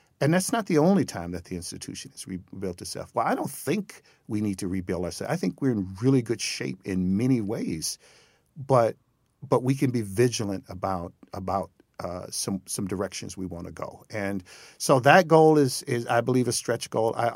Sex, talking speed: male, 205 wpm